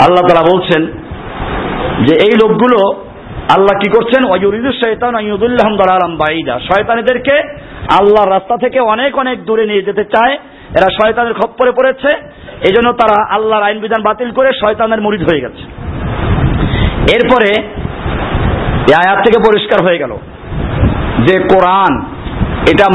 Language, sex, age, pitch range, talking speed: Bengali, male, 50-69, 210-270 Hz, 100 wpm